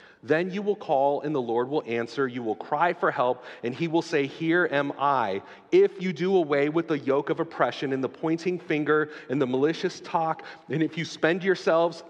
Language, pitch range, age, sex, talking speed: English, 120-155 Hz, 40-59, male, 215 wpm